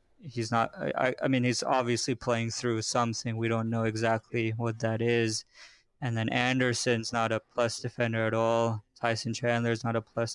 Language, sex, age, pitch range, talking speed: English, male, 20-39, 115-130 Hz, 180 wpm